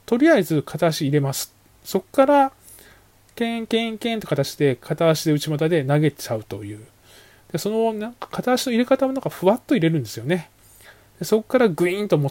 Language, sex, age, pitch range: Japanese, male, 20-39, 140-215 Hz